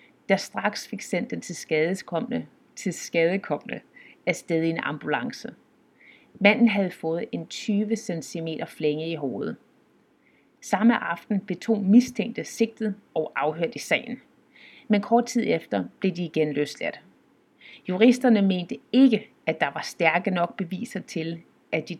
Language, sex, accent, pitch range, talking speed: Danish, female, native, 170-235 Hz, 140 wpm